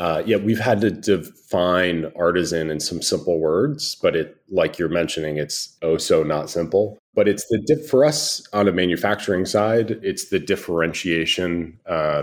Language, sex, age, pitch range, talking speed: English, male, 30-49, 80-110 Hz, 170 wpm